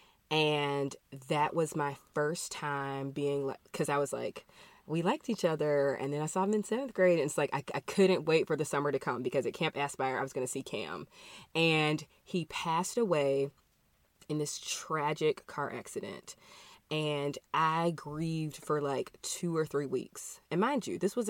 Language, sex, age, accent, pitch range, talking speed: English, female, 20-39, American, 140-180 Hz, 195 wpm